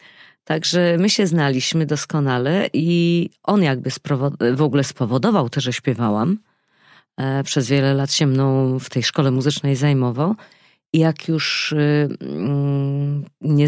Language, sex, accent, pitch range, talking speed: Polish, female, native, 140-200 Hz, 125 wpm